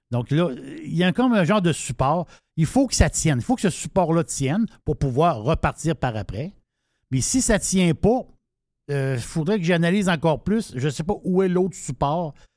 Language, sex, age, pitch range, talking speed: French, male, 60-79, 130-180 Hz, 220 wpm